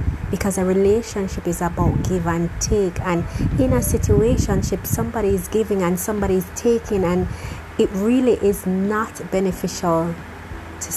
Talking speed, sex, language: 140 wpm, female, English